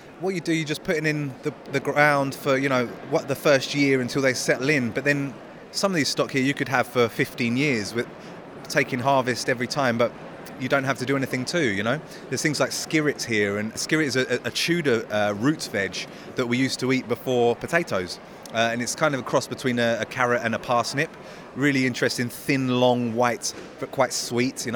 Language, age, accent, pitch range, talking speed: English, 30-49, British, 120-140 Hz, 230 wpm